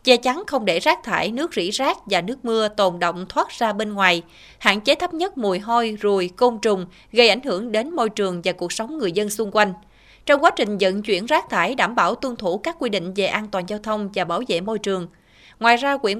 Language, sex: Vietnamese, female